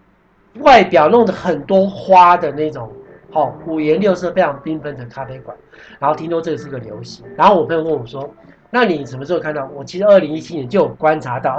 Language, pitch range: Chinese, 135-185 Hz